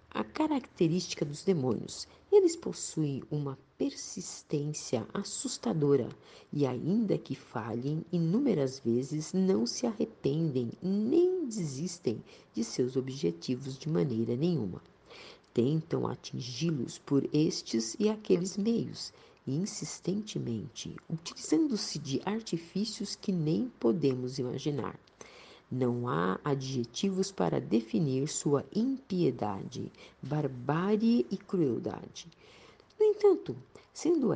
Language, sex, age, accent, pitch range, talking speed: Portuguese, female, 50-69, Brazilian, 135-220 Hz, 95 wpm